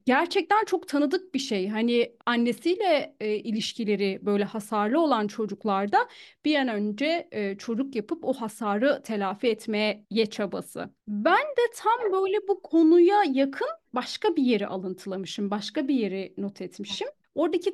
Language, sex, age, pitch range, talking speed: Turkish, female, 30-49, 205-345 Hz, 140 wpm